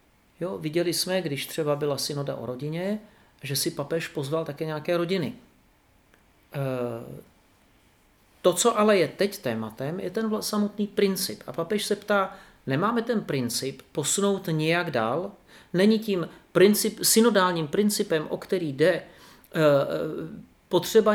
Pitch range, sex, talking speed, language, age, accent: 145-205 Hz, male, 120 wpm, Czech, 40-59, native